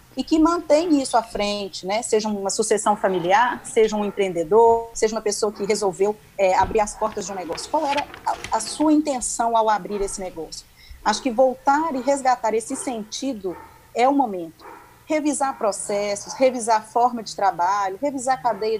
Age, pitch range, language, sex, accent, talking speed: 40-59, 200-260 Hz, Portuguese, female, Brazilian, 175 wpm